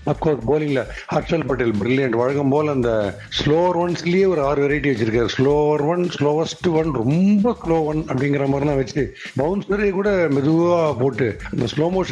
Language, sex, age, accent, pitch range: Tamil, male, 60-79, native, 130-175 Hz